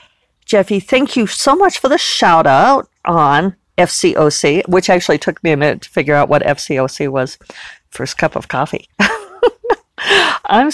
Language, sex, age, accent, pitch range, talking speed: English, female, 50-69, American, 160-240 Hz, 155 wpm